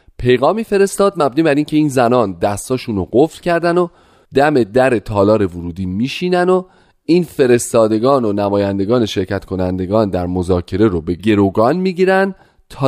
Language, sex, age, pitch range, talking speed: Persian, male, 30-49, 95-140 Hz, 145 wpm